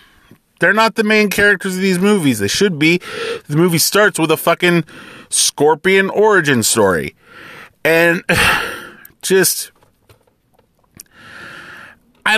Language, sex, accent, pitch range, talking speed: English, male, American, 130-195 Hz, 110 wpm